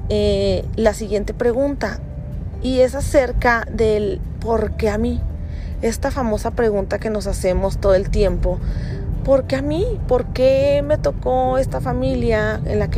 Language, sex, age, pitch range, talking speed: Spanish, female, 30-49, 170-230 Hz, 145 wpm